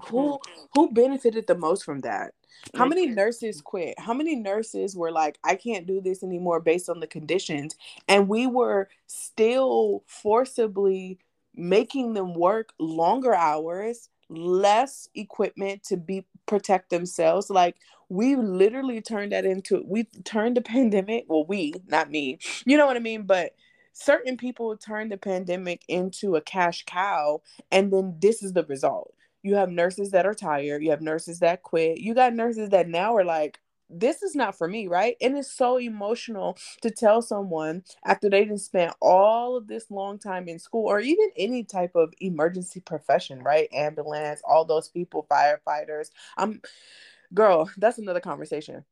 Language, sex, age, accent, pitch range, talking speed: English, female, 20-39, American, 170-230 Hz, 165 wpm